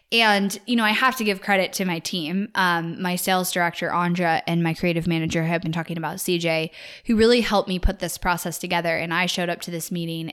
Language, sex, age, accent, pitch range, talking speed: English, female, 10-29, American, 175-210 Hz, 230 wpm